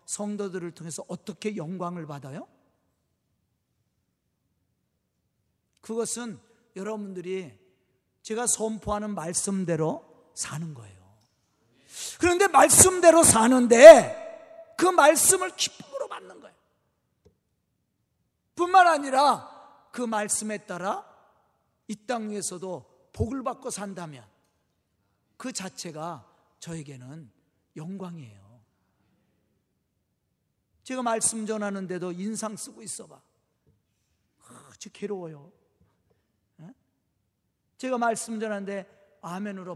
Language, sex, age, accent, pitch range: Korean, male, 40-59, native, 155-235 Hz